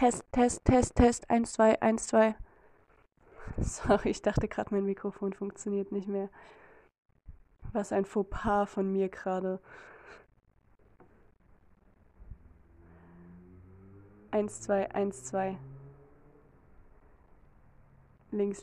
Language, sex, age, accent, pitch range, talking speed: German, female, 20-39, German, 185-225 Hz, 90 wpm